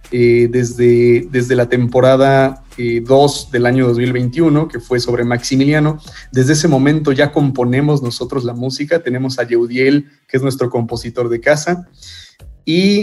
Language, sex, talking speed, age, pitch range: Spanish, male, 145 wpm, 30-49, 120-145 Hz